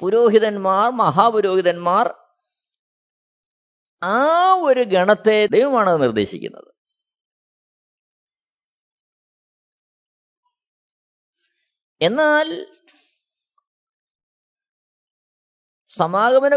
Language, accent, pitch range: Malayalam, native, 215-315 Hz